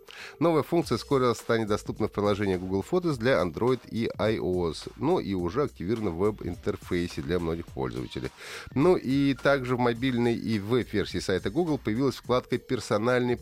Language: Russian